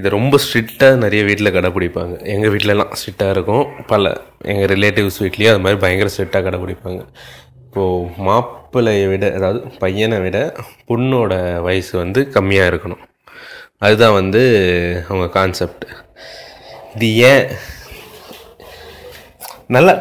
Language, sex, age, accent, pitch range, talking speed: Tamil, male, 20-39, native, 95-115 Hz, 110 wpm